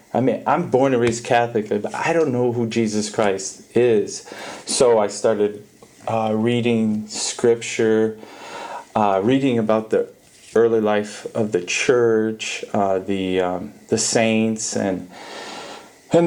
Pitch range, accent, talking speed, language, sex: 110-125 Hz, American, 135 wpm, English, male